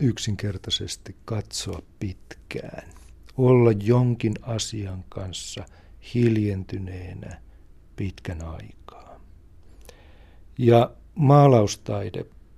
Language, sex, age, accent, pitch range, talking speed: Finnish, male, 60-79, native, 85-110 Hz, 55 wpm